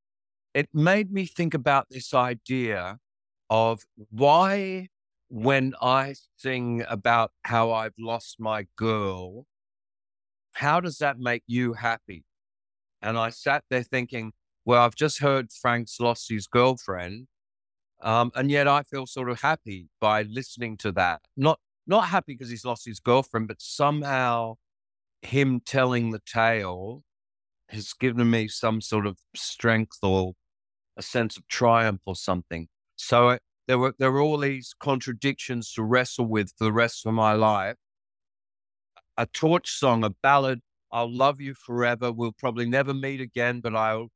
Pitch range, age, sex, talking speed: 110-140 Hz, 50-69, male, 150 wpm